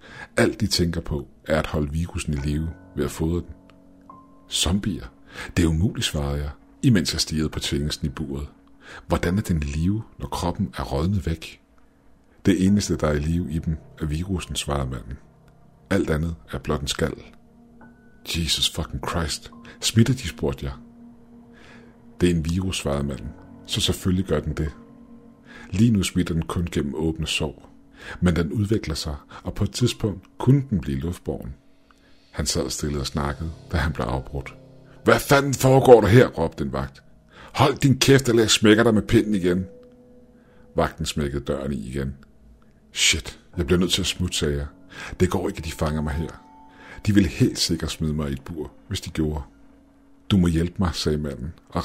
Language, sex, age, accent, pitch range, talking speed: Danish, male, 60-79, native, 75-100 Hz, 185 wpm